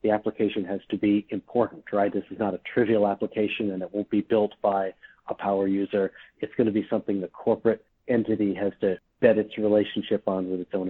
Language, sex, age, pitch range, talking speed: English, male, 40-59, 100-110 Hz, 215 wpm